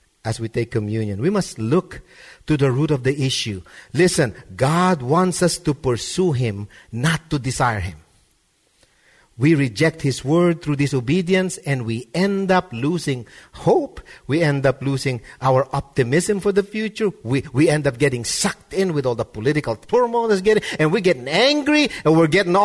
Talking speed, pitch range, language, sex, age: 175 wpm, 130-180 Hz, English, male, 50-69